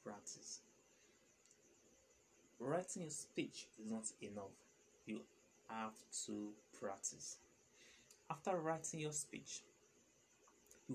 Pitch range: 110-150 Hz